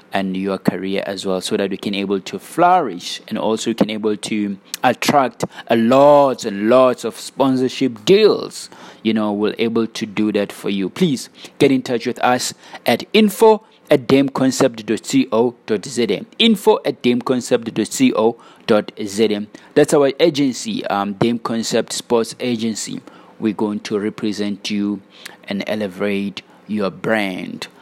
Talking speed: 140 wpm